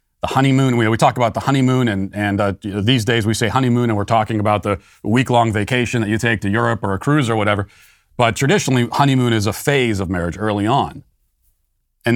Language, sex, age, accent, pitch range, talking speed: English, male, 40-59, American, 105-135 Hz, 230 wpm